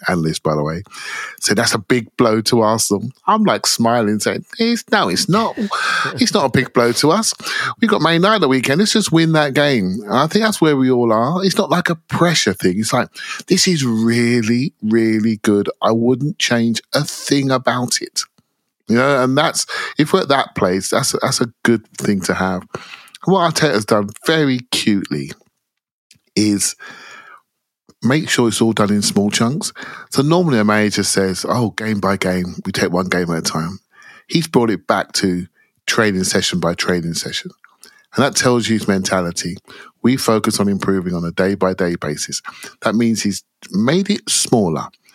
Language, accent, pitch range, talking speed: English, British, 100-155 Hz, 190 wpm